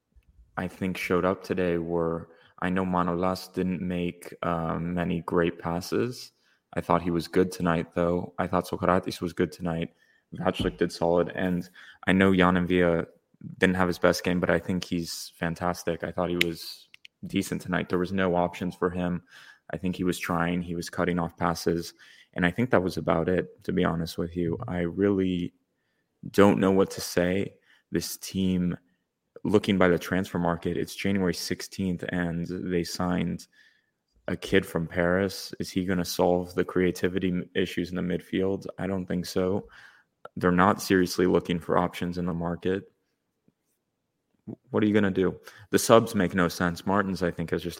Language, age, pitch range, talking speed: English, 20-39, 85-95 Hz, 180 wpm